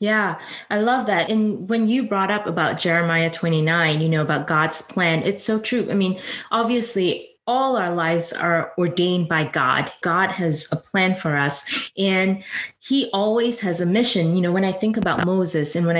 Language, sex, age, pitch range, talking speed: English, female, 20-39, 175-225 Hz, 190 wpm